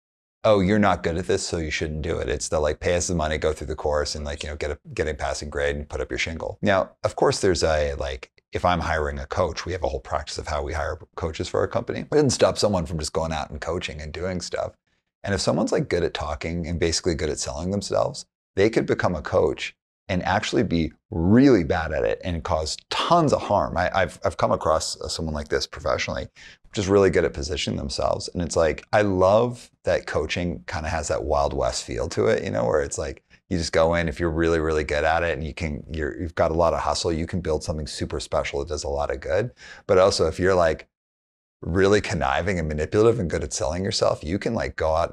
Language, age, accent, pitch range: English, 30-49, American, 75-90 Hz